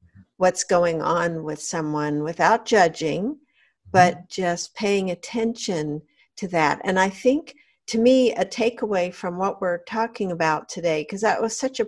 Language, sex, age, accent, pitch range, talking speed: English, female, 50-69, American, 175-225 Hz, 155 wpm